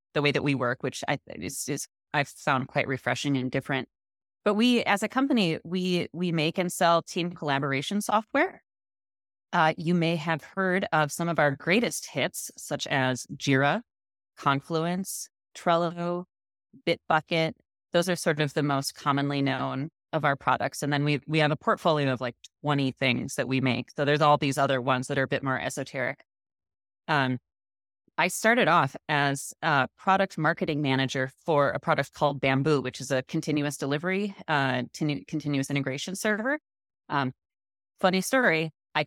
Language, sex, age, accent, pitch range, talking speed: English, female, 30-49, American, 135-170 Hz, 170 wpm